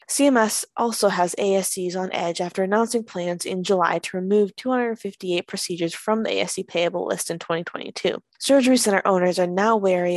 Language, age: English, 20-39